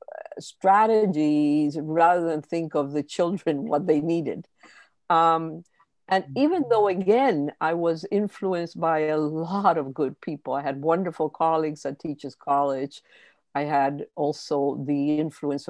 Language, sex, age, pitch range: English, female, 60-79, 150-180 Hz